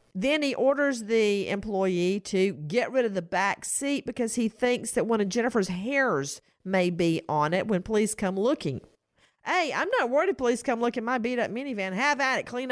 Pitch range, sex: 185-280 Hz, female